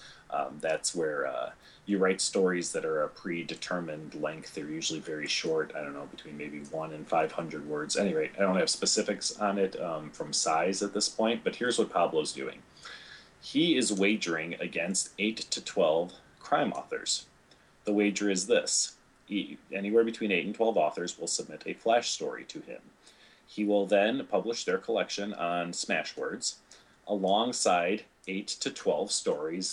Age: 30-49